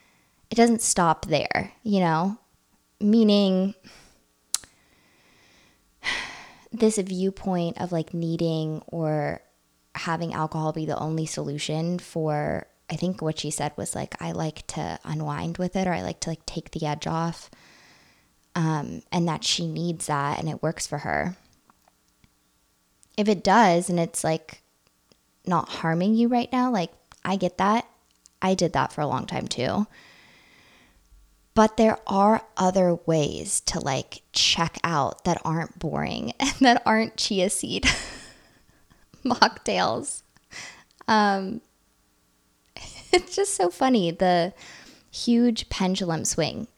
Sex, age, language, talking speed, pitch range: female, 20-39, English, 130 wpm, 150-195 Hz